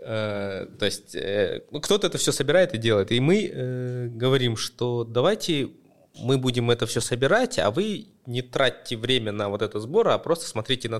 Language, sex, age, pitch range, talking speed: Russian, male, 20-39, 105-135 Hz, 170 wpm